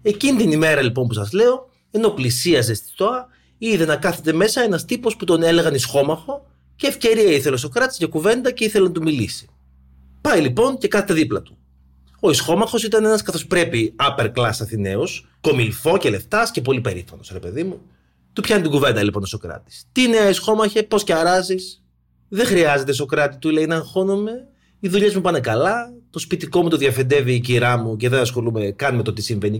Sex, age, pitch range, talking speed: male, 30-49, 115-190 Hz, 180 wpm